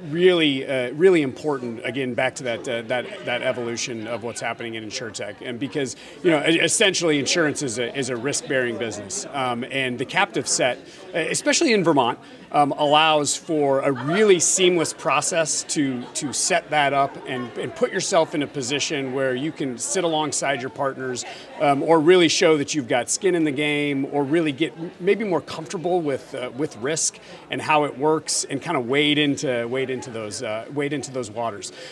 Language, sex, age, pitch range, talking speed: English, male, 40-59, 125-155 Hz, 190 wpm